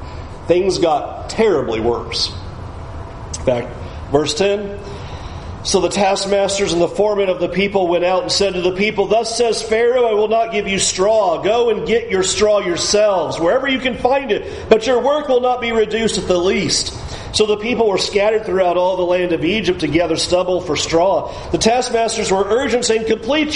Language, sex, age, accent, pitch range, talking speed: English, male, 40-59, American, 175-240 Hz, 195 wpm